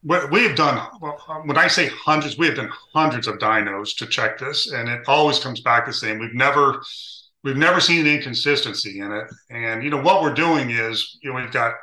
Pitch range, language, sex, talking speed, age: 110-150 Hz, English, male, 210 wpm, 40-59